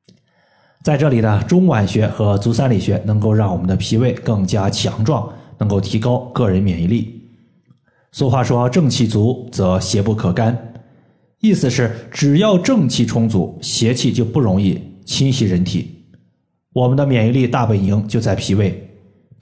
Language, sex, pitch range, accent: Chinese, male, 105-140 Hz, native